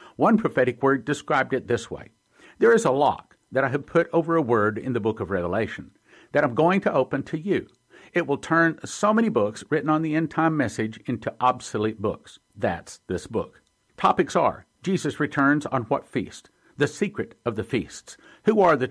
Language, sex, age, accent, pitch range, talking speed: English, male, 50-69, American, 125-165 Hz, 200 wpm